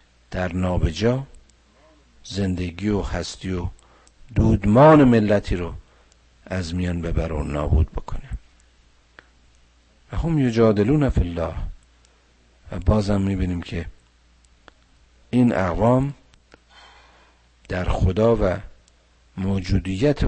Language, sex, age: Persian, male, 50-69